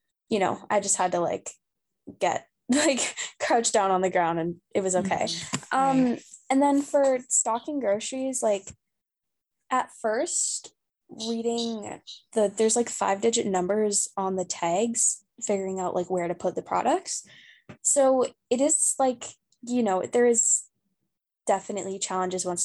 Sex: female